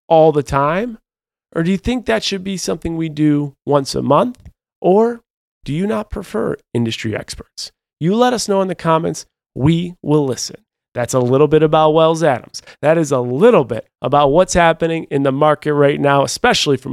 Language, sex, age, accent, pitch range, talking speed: English, male, 30-49, American, 135-190 Hz, 195 wpm